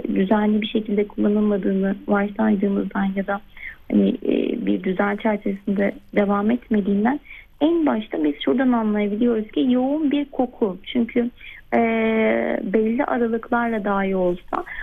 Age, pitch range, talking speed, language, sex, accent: 30-49, 200-230 Hz, 115 wpm, Turkish, female, native